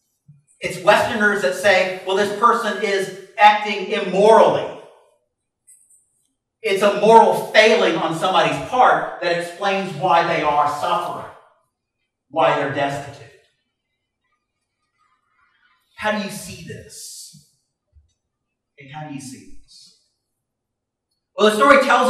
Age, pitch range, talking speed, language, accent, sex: 40-59, 140-215 Hz, 110 wpm, English, American, male